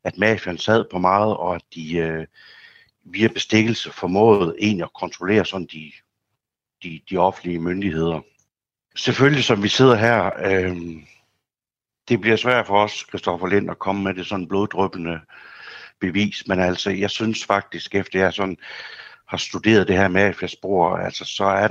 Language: Danish